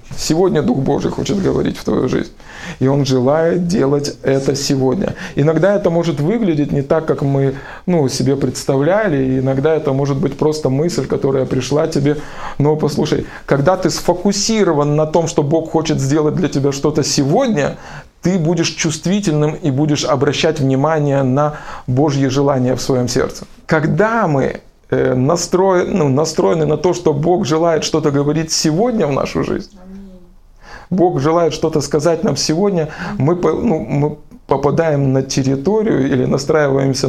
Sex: male